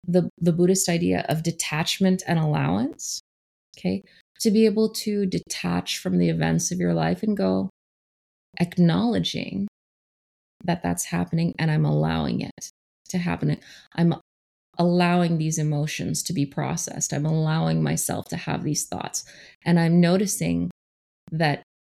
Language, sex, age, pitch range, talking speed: English, female, 20-39, 140-180 Hz, 135 wpm